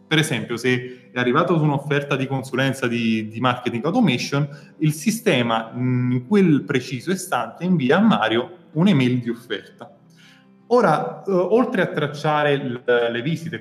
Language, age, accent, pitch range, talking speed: Italian, 30-49, native, 120-170 Hz, 140 wpm